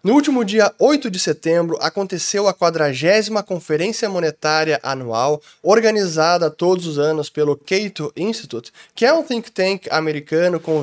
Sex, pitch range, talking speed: male, 155-205 Hz, 145 wpm